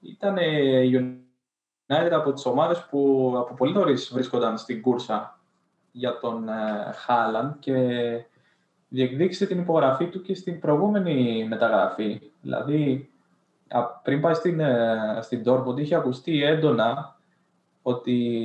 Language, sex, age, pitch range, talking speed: Greek, male, 20-39, 120-155 Hz, 115 wpm